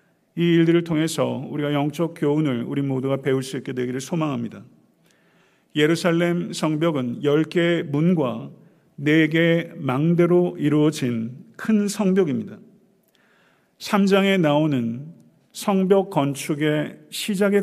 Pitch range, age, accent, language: 135-175 Hz, 50-69, native, Korean